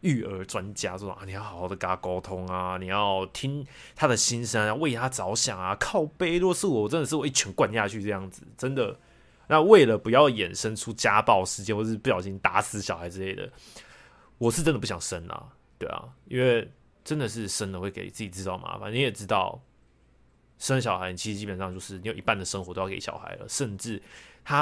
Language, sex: Chinese, male